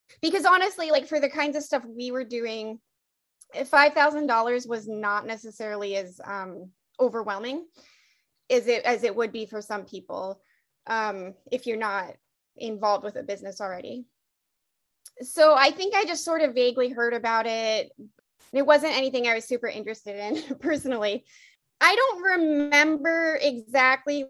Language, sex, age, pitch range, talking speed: English, female, 20-39, 220-275 Hz, 150 wpm